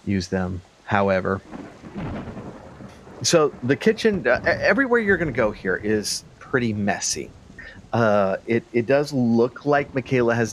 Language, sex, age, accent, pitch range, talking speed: English, male, 40-59, American, 100-120 Hz, 135 wpm